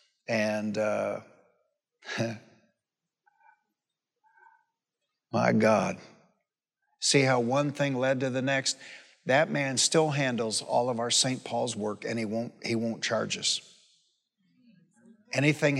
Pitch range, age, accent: 115-145 Hz, 60-79, American